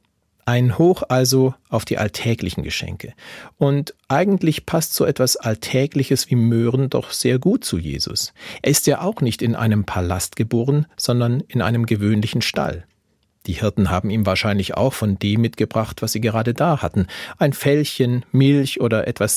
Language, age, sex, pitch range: German, 40-59, male, 100-135 Hz